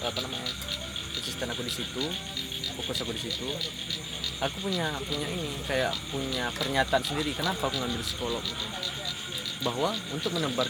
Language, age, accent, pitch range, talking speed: Indonesian, 20-39, native, 115-145 Hz, 145 wpm